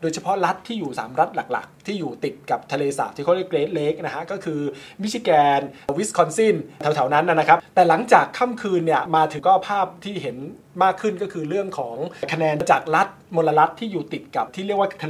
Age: 20-39